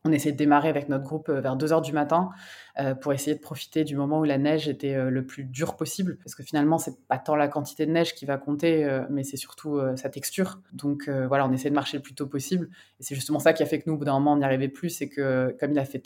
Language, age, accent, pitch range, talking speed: French, 20-39, French, 140-165 Hz, 285 wpm